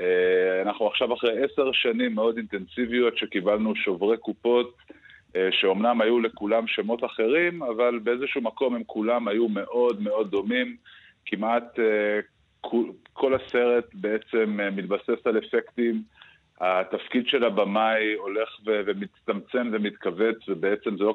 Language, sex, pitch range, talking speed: Hebrew, male, 105-125 Hz, 115 wpm